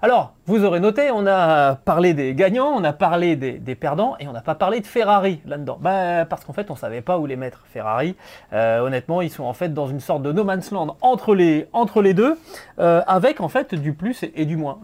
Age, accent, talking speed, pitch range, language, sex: 30-49, French, 255 wpm, 140-195 Hz, French, male